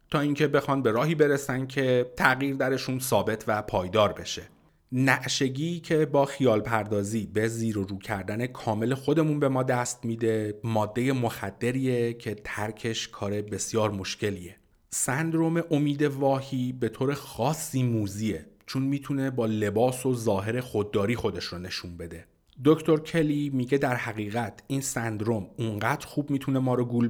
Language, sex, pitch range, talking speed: Persian, male, 105-135 Hz, 150 wpm